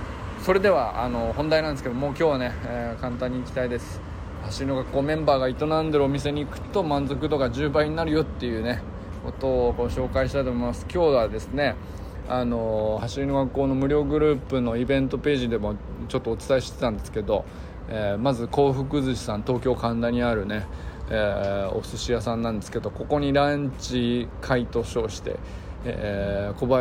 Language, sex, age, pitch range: Japanese, male, 20-39, 105-135 Hz